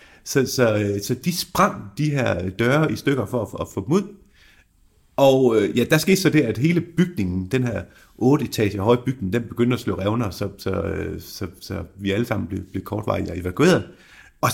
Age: 30-49